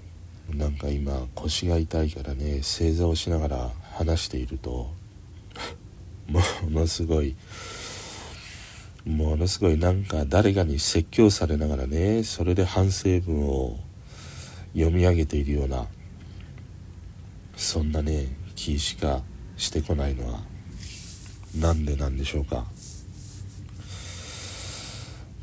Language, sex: Japanese, male